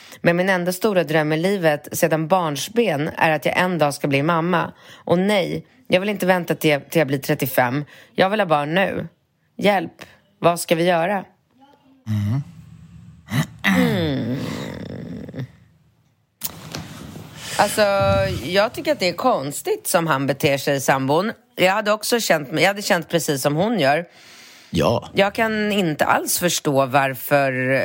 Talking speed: 155 wpm